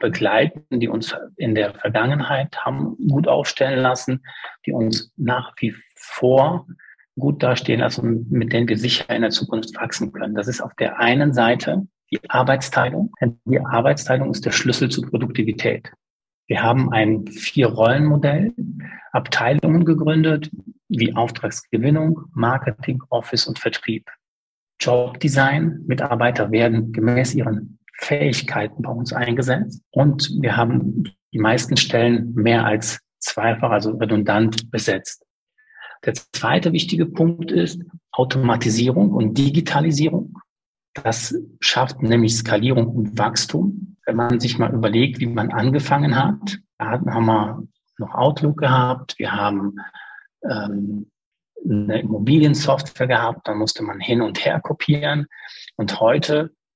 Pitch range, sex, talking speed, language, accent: 115-150 Hz, male, 130 wpm, German, German